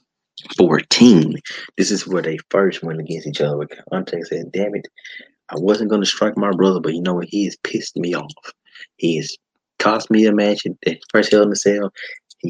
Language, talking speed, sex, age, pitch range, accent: English, 210 wpm, male, 20-39, 95-115 Hz, American